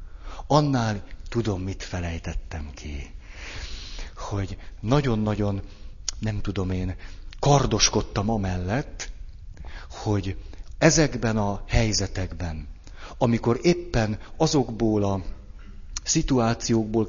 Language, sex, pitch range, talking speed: Hungarian, male, 95-120 Hz, 75 wpm